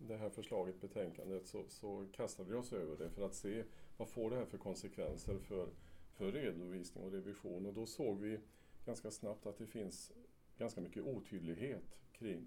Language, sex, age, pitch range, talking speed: Swedish, male, 40-59, 95-115 Hz, 185 wpm